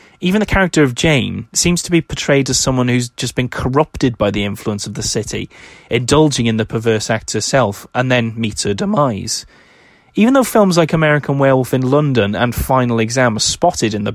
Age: 30-49